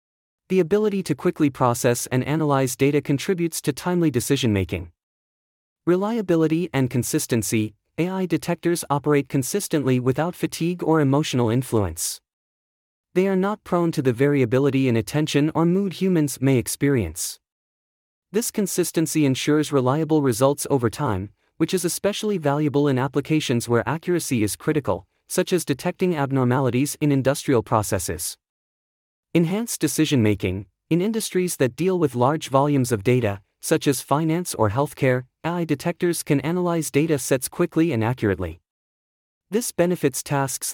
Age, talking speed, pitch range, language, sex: 30-49, 135 wpm, 120-165 Hz, English, male